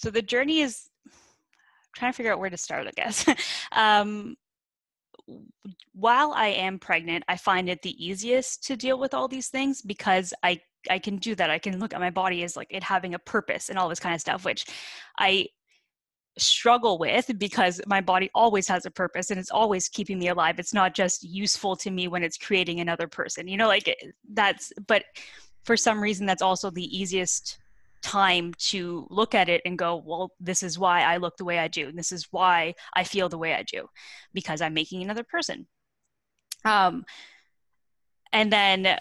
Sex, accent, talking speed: female, American, 195 wpm